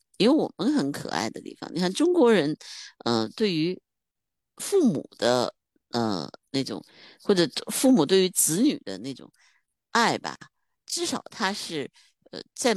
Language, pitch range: Chinese, 160-260 Hz